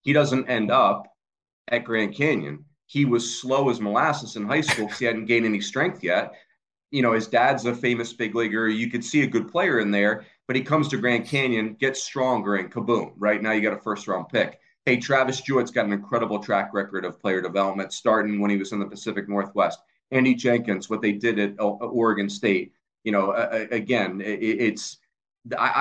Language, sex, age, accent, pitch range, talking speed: English, male, 40-59, American, 115-145 Hz, 210 wpm